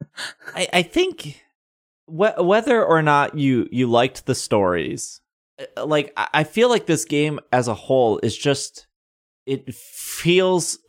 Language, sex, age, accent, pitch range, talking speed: English, male, 20-39, American, 105-145 Hz, 140 wpm